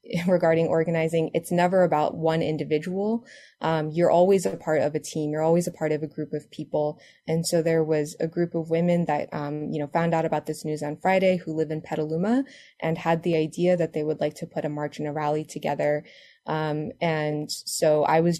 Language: English